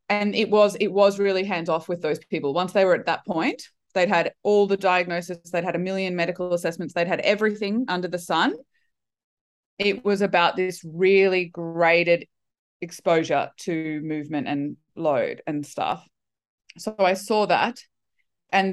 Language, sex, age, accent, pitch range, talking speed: English, female, 20-39, Australian, 165-200 Hz, 165 wpm